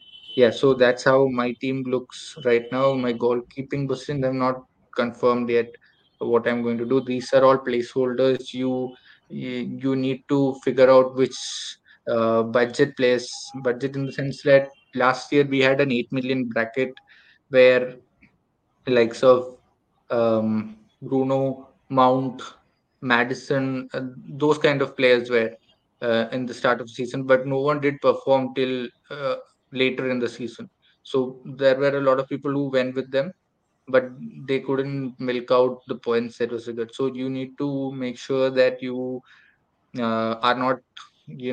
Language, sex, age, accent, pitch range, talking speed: English, male, 20-39, Indian, 120-135 Hz, 160 wpm